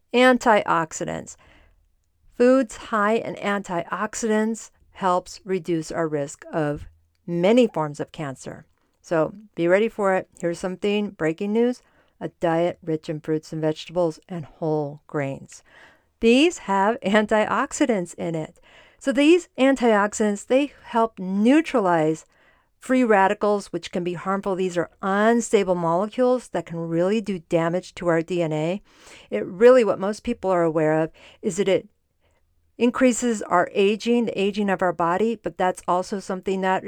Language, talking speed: English, 140 wpm